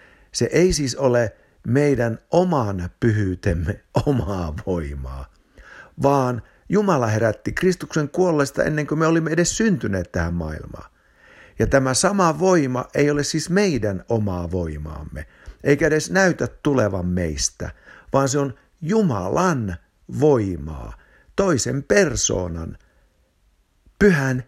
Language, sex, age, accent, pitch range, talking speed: Finnish, male, 60-79, native, 90-145 Hz, 110 wpm